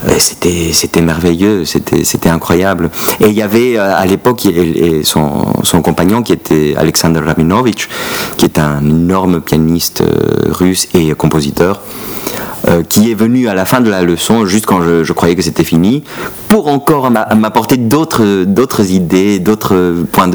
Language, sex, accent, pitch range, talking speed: French, male, French, 85-110 Hz, 155 wpm